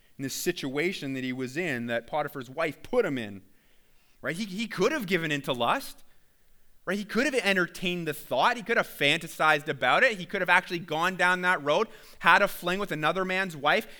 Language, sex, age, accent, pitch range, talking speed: English, male, 30-49, American, 110-165 Hz, 215 wpm